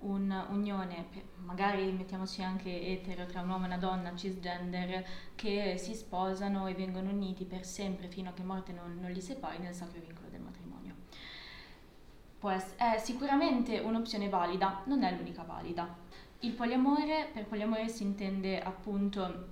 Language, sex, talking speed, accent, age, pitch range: Italian, female, 155 wpm, native, 20-39, 180-205 Hz